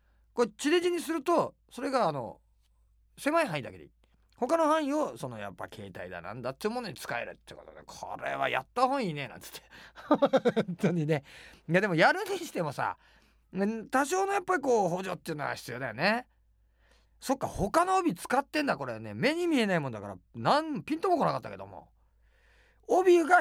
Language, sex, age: Japanese, male, 40-59